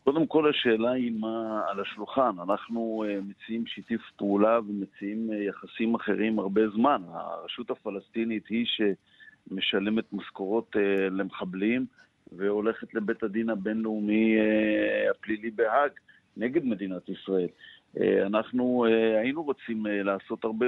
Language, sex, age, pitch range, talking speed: English, male, 50-69, 100-110 Hz, 100 wpm